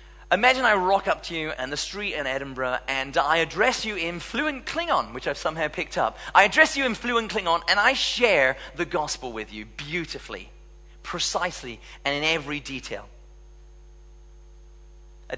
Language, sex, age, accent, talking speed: English, male, 30-49, British, 170 wpm